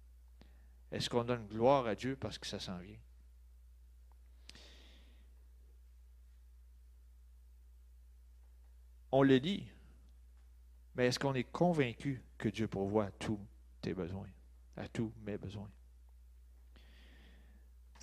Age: 40-59